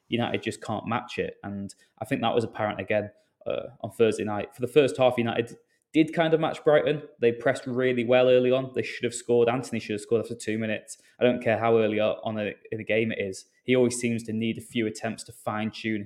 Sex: male